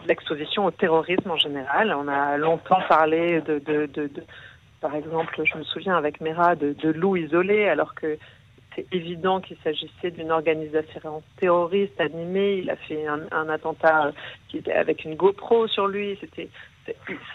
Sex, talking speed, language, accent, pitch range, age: female, 160 wpm, Hebrew, French, 160-215 Hz, 50-69